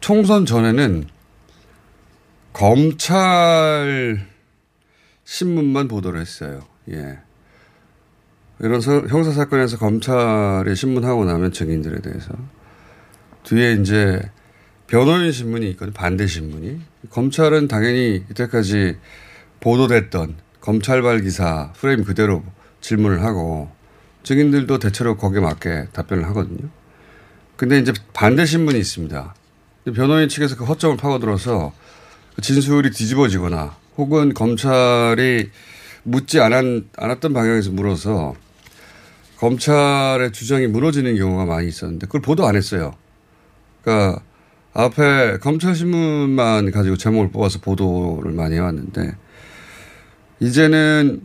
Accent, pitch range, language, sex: native, 95-140 Hz, Korean, male